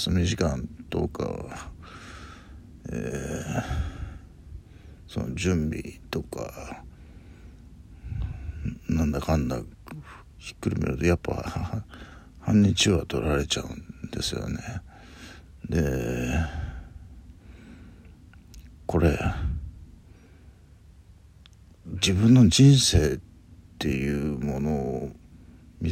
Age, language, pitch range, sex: 60-79, Japanese, 80-90 Hz, male